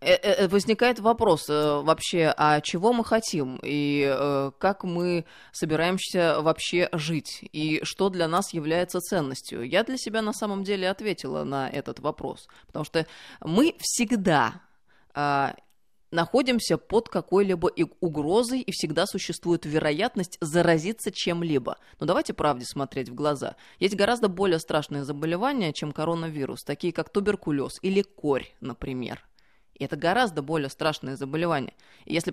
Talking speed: 130 wpm